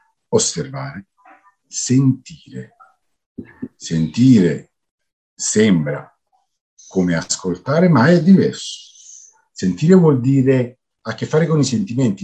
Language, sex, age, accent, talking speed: Italian, male, 50-69, native, 90 wpm